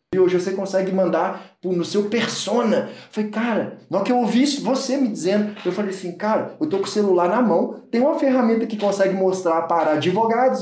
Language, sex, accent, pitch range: Portuguese, male, Brazilian, 160-210 Hz